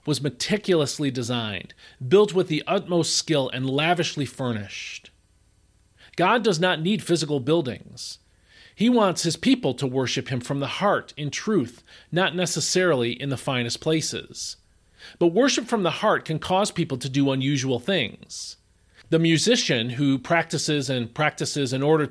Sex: male